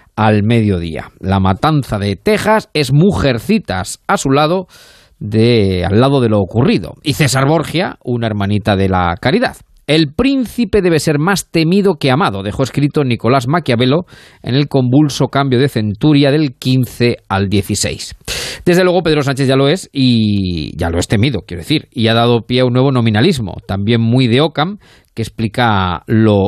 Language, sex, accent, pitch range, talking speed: Spanish, male, Spanish, 110-150 Hz, 170 wpm